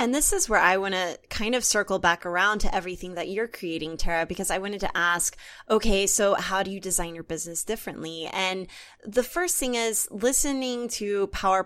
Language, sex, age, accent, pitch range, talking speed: English, female, 20-39, American, 180-235 Hz, 205 wpm